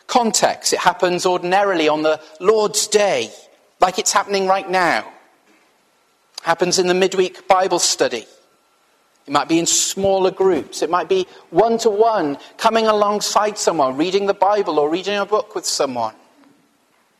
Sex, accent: male, British